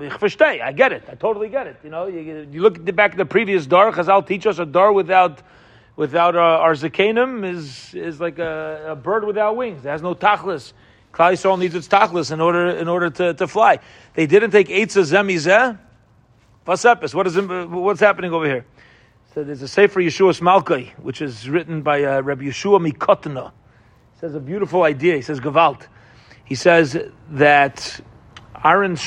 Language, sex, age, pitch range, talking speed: English, male, 40-59, 140-190 Hz, 185 wpm